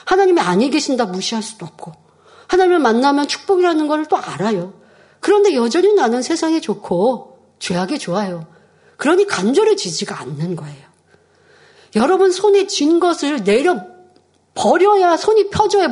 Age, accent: 40-59, native